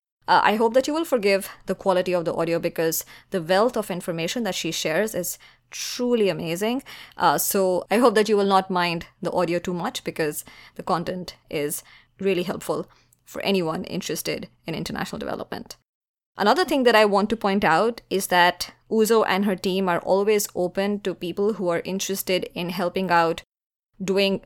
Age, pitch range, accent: 20-39, 175-205 Hz, Indian